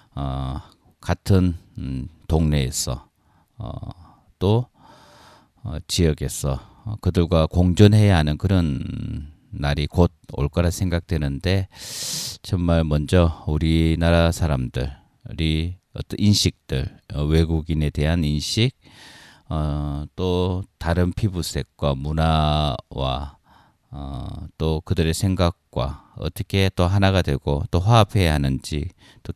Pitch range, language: 75-95 Hz, Korean